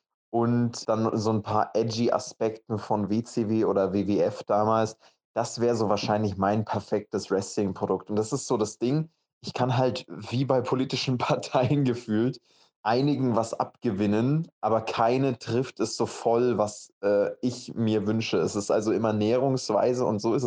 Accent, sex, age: German, male, 20-39